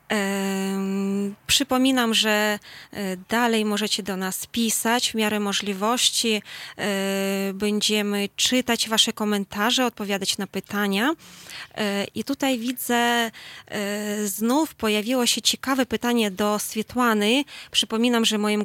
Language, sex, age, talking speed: Polish, female, 20-39, 95 wpm